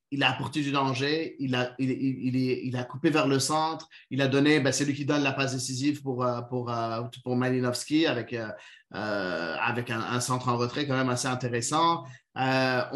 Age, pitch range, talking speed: 30-49, 130-160 Hz, 205 wpm